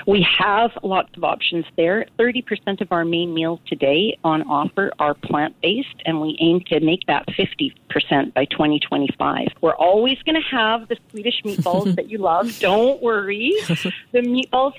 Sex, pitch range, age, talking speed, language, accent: female, 150-195 Hz, 40-59, 160 wpm, English, American